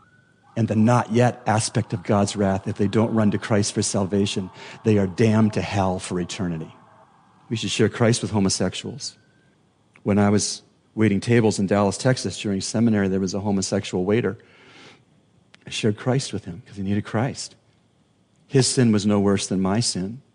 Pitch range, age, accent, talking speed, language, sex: 100-120 Hz, 40-59, American, 180 wpm, English, male